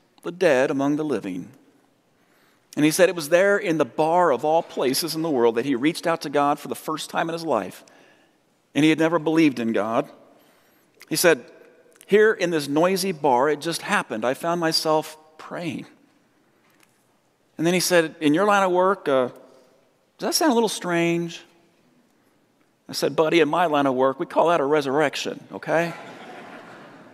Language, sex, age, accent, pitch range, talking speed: English, male, 40-59, American, 135-165 Hz, 190 wpm